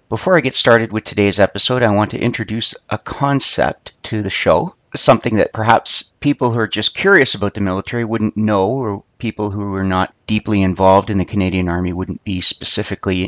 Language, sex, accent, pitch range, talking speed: English, male, American, 95-115 Hz, 195 wpm